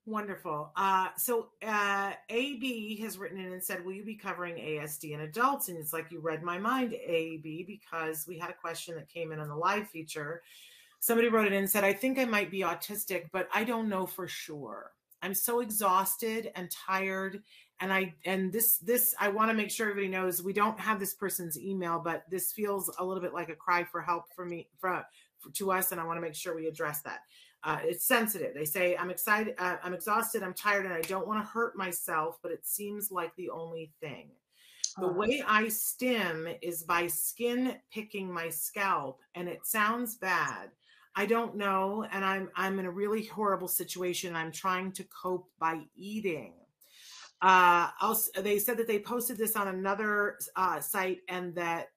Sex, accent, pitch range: female, American, 175-210 Hz